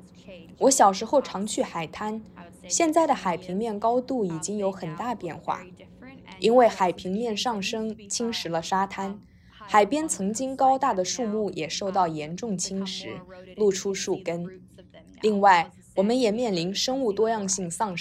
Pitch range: 180-235 Hz